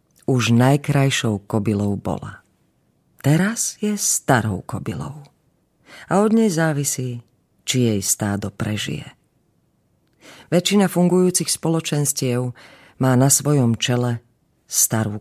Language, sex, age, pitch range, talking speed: Slovak, female, 40-59, 110-150 Hz, 95 wpm